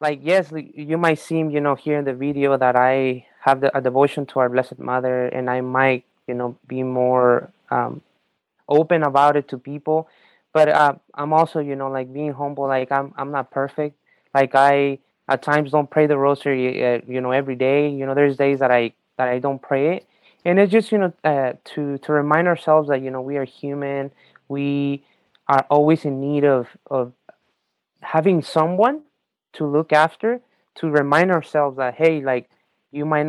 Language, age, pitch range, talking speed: English, 20-39, 130-150 Hz, 195 wpm